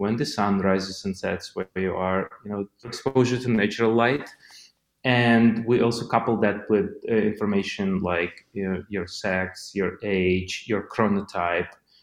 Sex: male